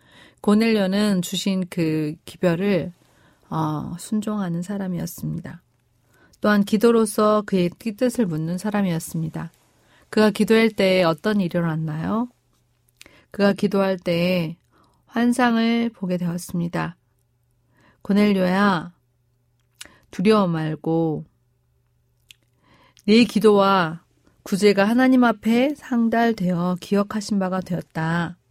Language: Korean